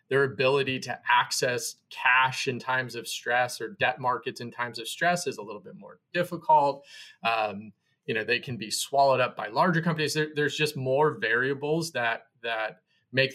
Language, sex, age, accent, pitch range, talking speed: English, male, 30-49, American, 125-160 Hz, 185 wpm